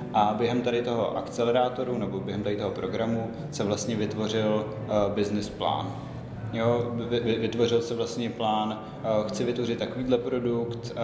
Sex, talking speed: male, 140 wpm